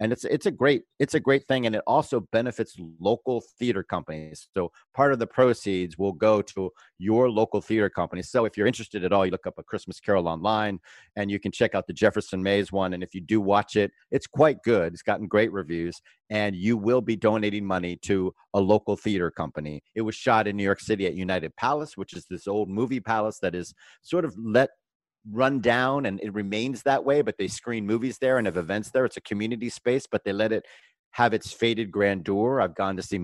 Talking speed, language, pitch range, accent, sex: 230 wpm, English, 95-120 Hz, American, male